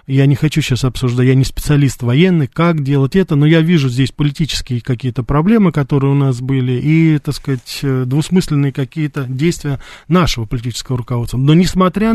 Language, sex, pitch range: Russian, male, 130-160 Hz